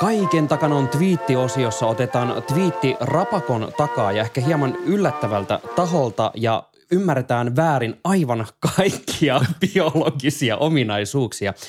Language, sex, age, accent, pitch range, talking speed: Finnish, male, 20-39, native, 110-150 Hz, 110 wpm